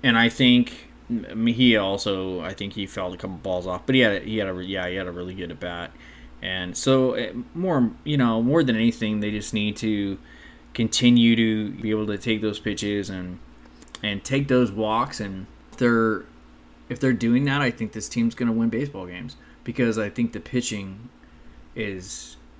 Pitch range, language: 95-115 Hz, English